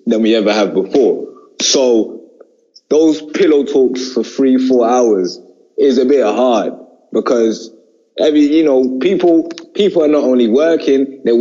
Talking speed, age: 145 wpm, 20-39